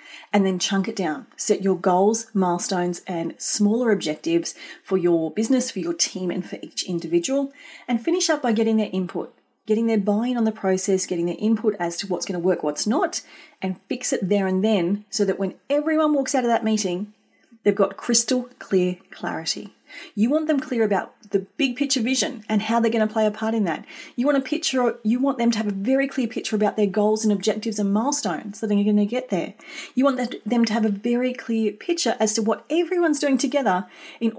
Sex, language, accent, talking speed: female, English, Australian, 220 wpm